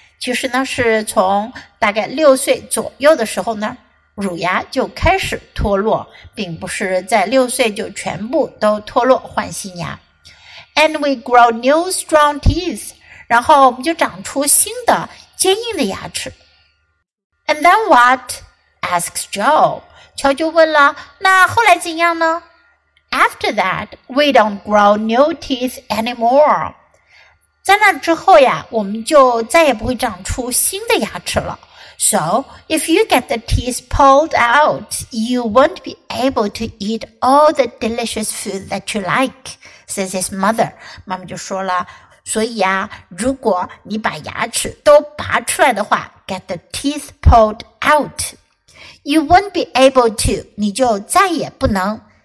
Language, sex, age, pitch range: Chinese, female, 60-79, 210-300 Hz